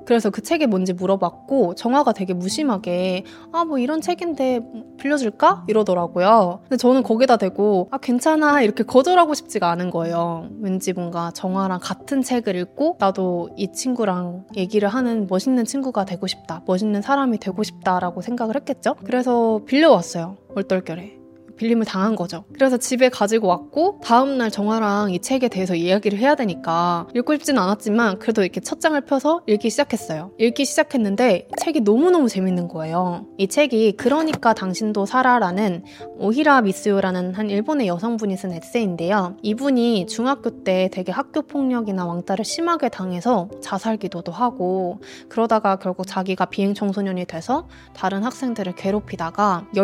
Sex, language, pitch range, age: female, Korean, 185-255 Hz, 20-39